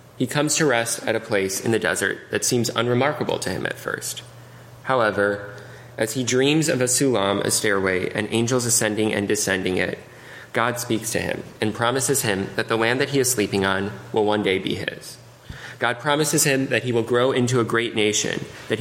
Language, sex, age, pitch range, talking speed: English, male, 20-39, 105-125 Hz, 205 wpm